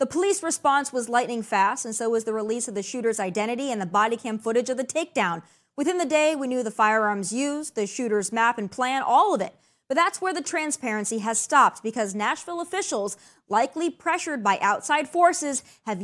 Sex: female